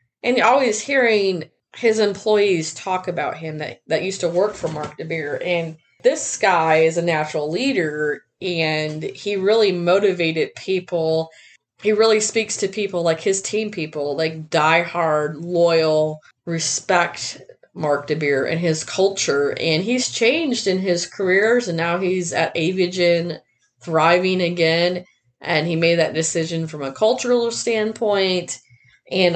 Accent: American